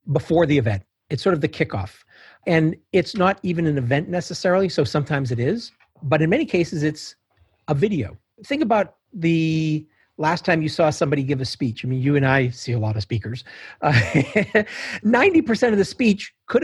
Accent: American